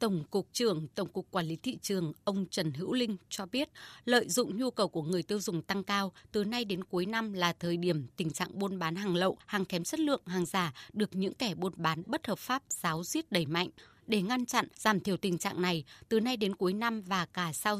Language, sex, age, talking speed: Vietnamese, female, 20-39, 245 wpm